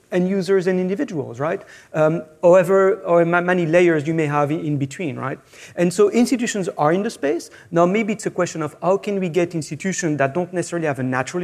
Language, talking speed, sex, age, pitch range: English, 210 wpm, male, 30-49, 150-190 Hz